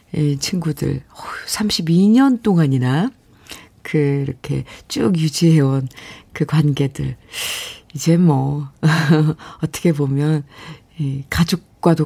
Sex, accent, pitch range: female, native, 160-235 Hz